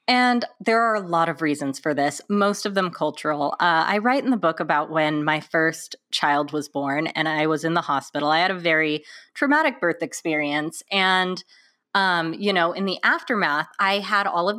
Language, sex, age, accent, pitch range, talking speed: English, female, 30-49, American, 155-230 Hz, 205 wpm